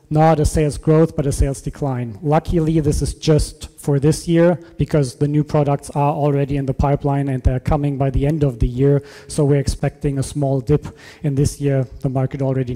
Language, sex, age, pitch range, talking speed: English, male, 30-49, 140-155 Hz, 210 wpm